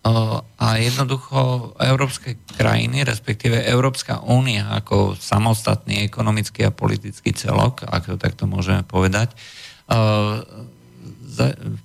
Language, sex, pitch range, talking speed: Slovak, male, 95-115 Hz, 90 wpm